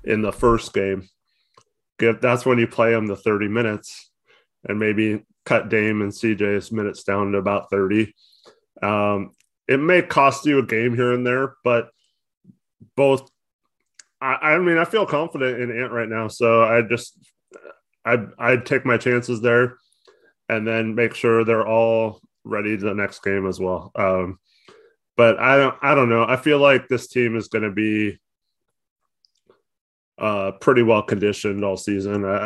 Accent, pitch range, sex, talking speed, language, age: American, 100-125 Hz, male, 165 wpm, English, 20-39